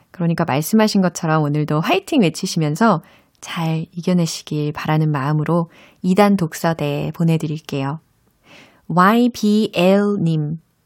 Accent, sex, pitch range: native, female, 155-210 Hz